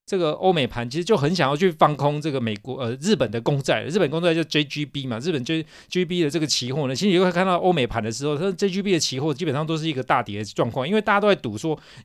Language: Chinese